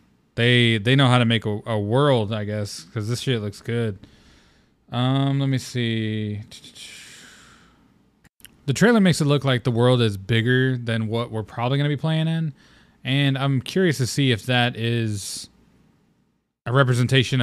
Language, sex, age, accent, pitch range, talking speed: English, male, 20-39, American, 110-135 Hz, 170 wpm